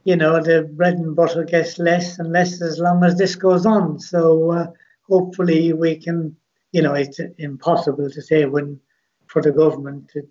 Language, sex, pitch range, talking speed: English, male, 150-170 Hz, 185 wpm